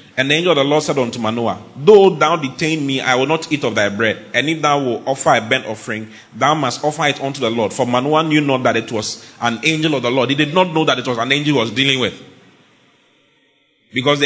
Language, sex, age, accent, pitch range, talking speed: English, male, 30-49, Nigerian, 115-155 Hz, 255 wpm